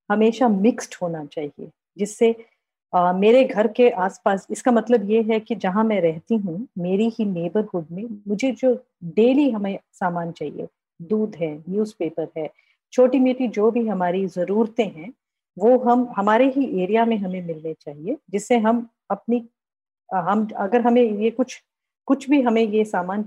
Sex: female